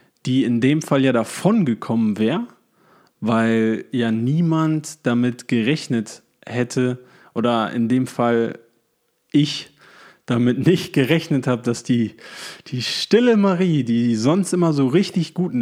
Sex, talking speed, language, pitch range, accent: male, 135 wpm, German, 120-165 Hz, German